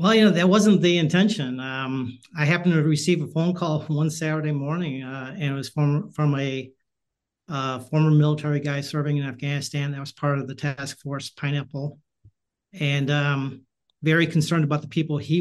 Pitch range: 140-155 Hz